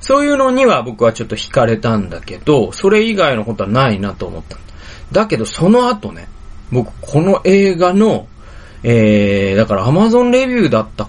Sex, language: male, Japanese